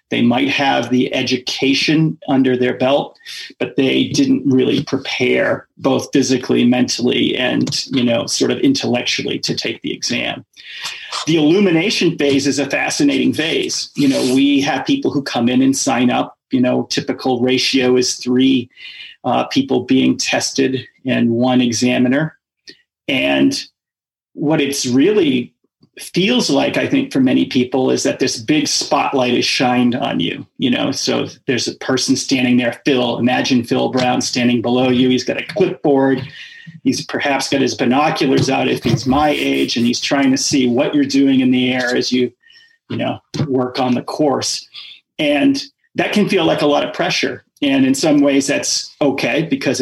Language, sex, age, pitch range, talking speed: English, male, 40-59, 125-150 Hz, 170 wpm